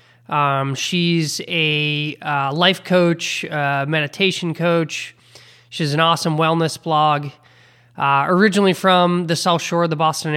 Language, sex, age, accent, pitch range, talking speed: English, male, 20-39, American, 140-165 Hz, 135 wpm